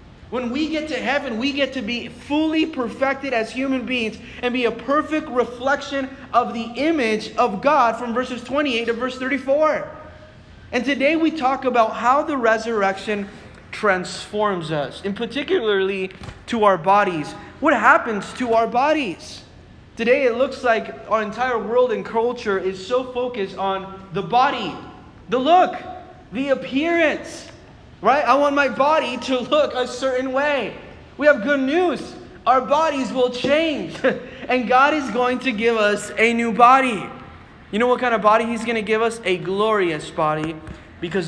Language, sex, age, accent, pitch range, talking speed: English, male, 20-39, American, 210-270 Hz, 165 wpm